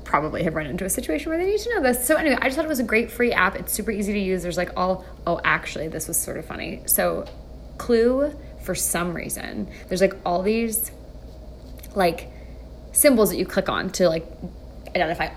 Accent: American